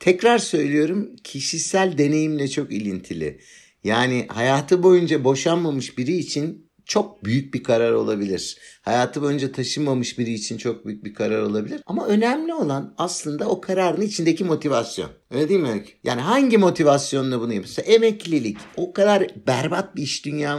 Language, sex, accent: Turkish, male, native